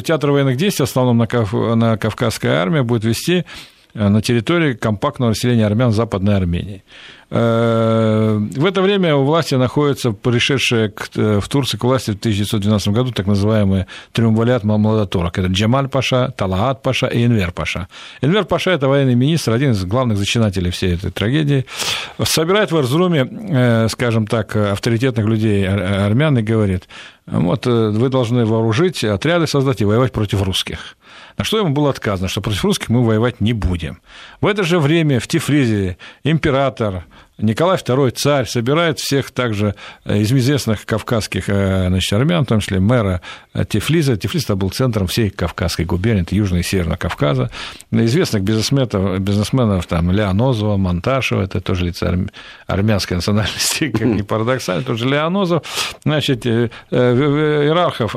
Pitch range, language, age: 105-145 Hz, Russian, 50-69